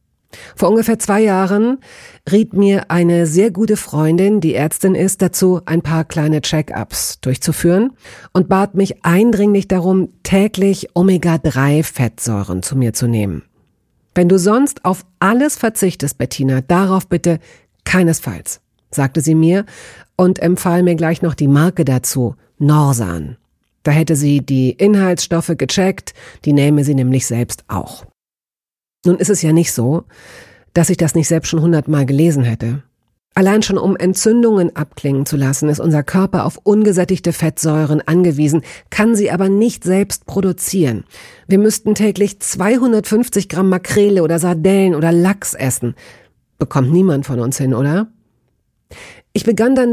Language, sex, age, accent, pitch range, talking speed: German, female, 50-69, German, 145-195 Hz, 145 wpm